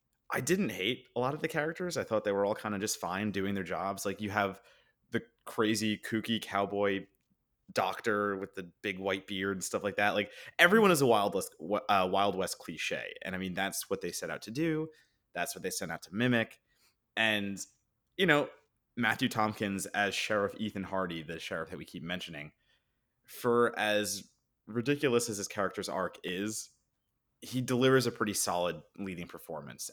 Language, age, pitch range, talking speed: English, 30-49, 95-120 Hz, 190 wpm